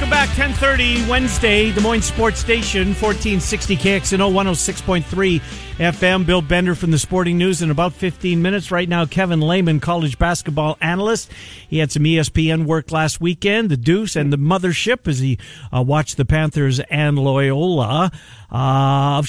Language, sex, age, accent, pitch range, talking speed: English, male, 50-69, American, 155-205 Hz, 160 wpm